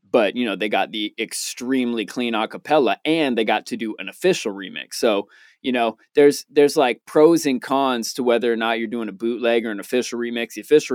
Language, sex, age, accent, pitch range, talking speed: English, male, 20-39, American, 110-150 Hz, 220 wpm